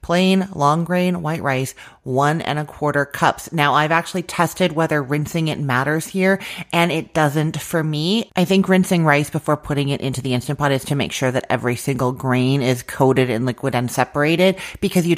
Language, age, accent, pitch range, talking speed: English, 30-49, American, 135-175 Hz, 200 wpm